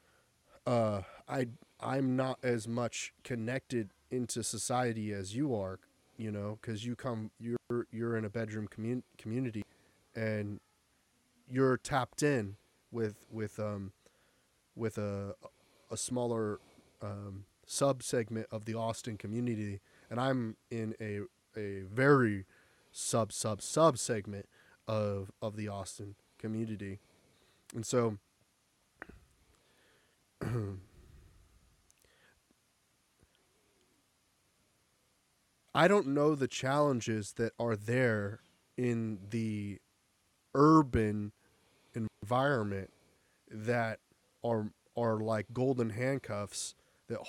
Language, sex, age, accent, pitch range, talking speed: English, male, 30-49, American, 100-120 Hz, 100 wpm